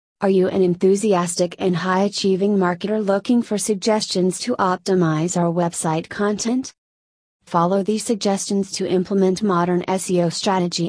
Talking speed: 125 wpm